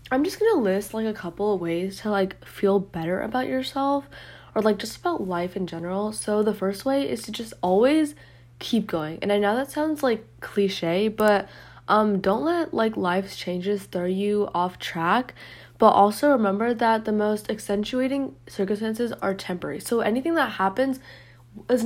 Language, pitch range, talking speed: English, 185-220 Hz, 180 wpm